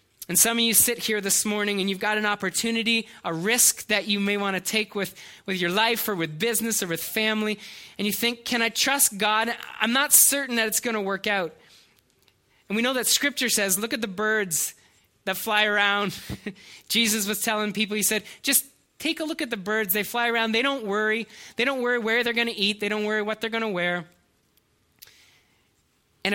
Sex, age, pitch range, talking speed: male, 20-39, 140-220 Hz, 220 wpm